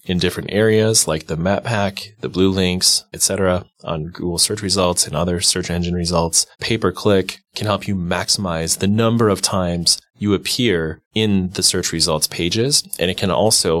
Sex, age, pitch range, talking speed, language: male, 20-39, 85-105 Hz, 175 wpm, English